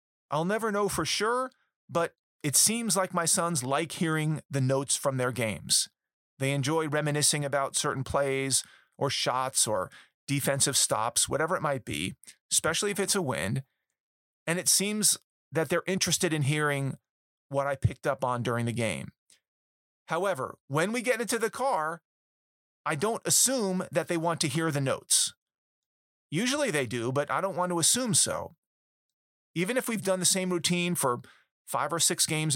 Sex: male